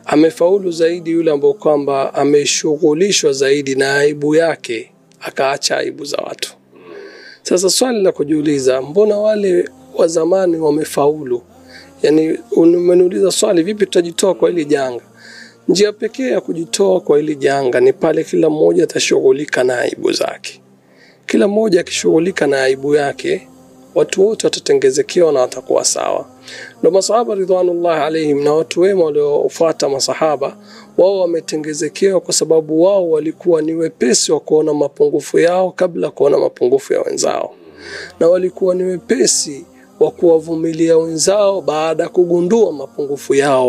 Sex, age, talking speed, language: male, 40-59, 130 wpm, Swahili